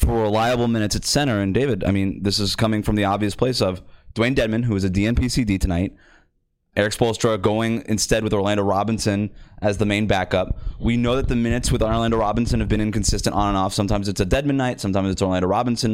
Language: English